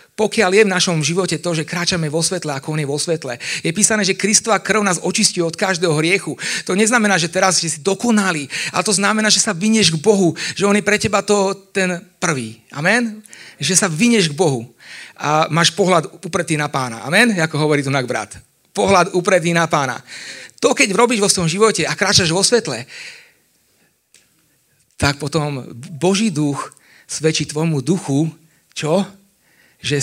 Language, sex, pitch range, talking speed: Slovak, male, 145-190 Hz, 175 wpm